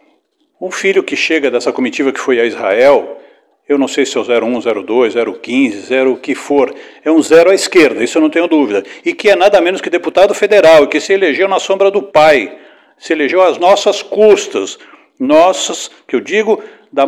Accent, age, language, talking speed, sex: Brazilian, 60-79, Portuguese, 205 wpm, male